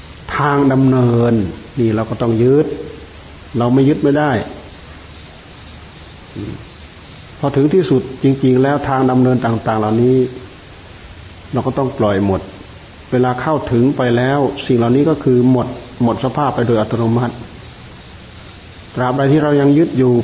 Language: Thai